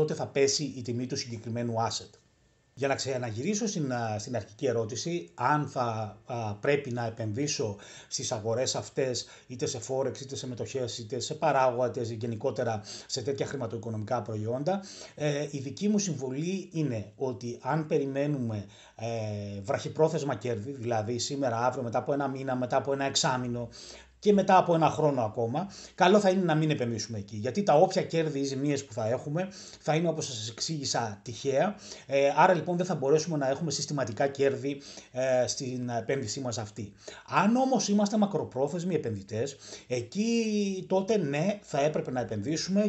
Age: 30-49